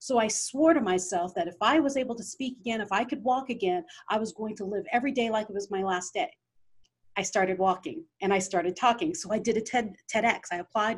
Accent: American